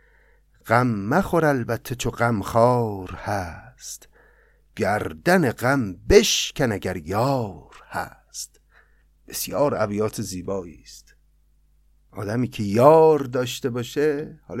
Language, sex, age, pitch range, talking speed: Persian, male, 50-69, 110-145 Hz, 85 wpm